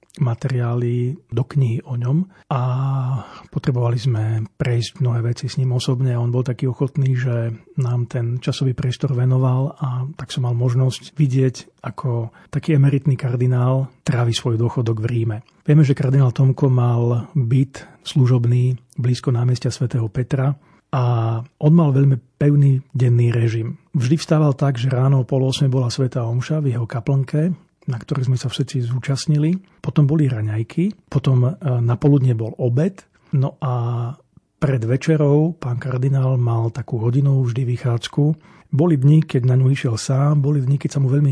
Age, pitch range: 40-59, 125-145 Hz